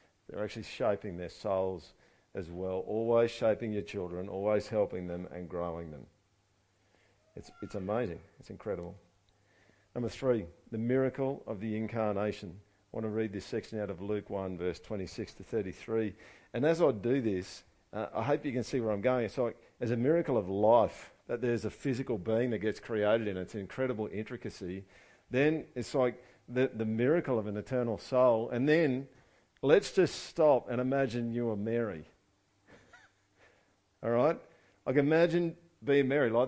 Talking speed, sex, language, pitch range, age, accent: 170 wpm, male, English, 100-135 Hz, 50-69, Australian